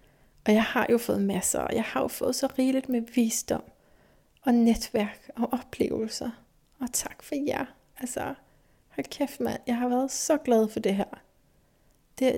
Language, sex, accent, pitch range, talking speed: Danish, female, native, 205-255 Hz, 165 wpm